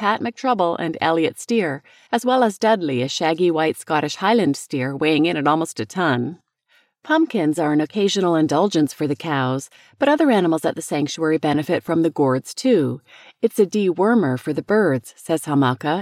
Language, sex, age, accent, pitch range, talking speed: English, female, 40-59, American, 150-215 Hz, 180 wpm